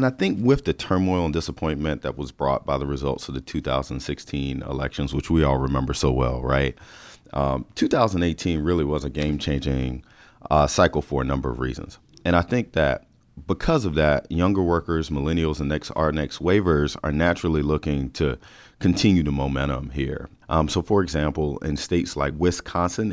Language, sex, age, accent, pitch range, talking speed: English, male, 40-59, American, 75-90 Hz, 180 wpm